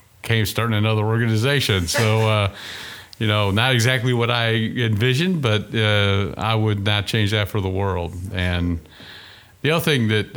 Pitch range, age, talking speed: 95-110 Hz, 40-59, 160 wpm